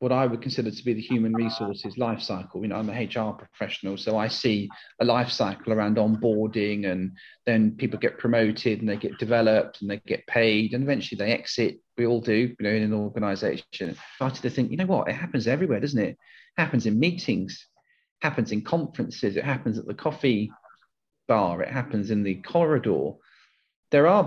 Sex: male